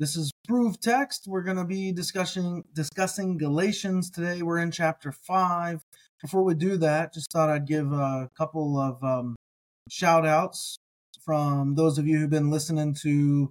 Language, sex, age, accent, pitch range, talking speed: English, male, 20-39, American, 135-160 Hz, 165 wpm